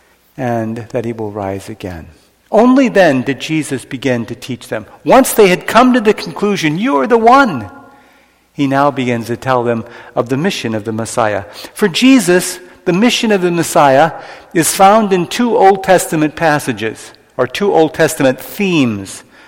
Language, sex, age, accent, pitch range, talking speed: English, male, 60-79, American, 130-200 Hz, 175 wpm